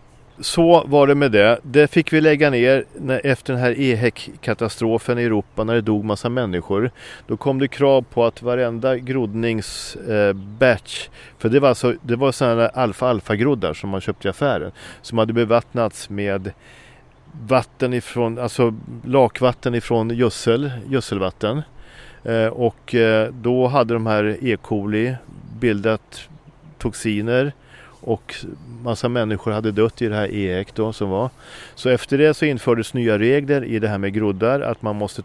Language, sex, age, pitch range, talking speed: Swedish, male, 40-59, 105-125 Hz, 165 wpm